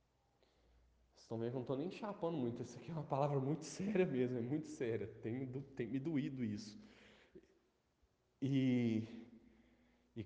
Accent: Brazilian